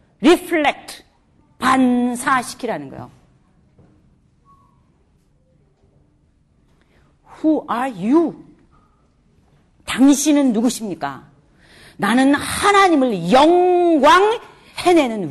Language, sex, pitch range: Korean, female, 185-280 Hz